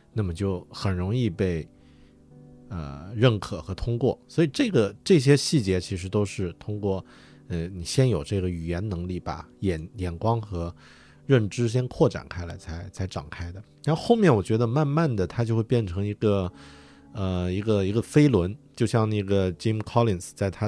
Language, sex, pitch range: Chinese, male, 90-120 Hz